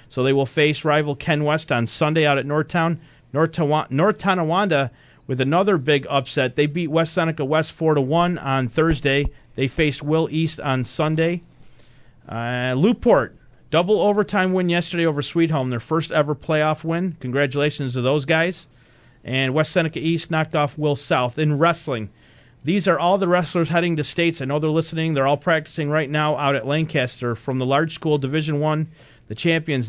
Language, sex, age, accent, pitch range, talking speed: English, male, 40-59, American, 135-160 Hz, 180 wpm